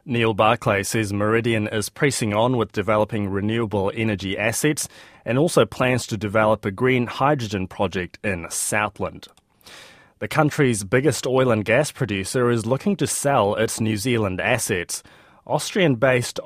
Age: 20-39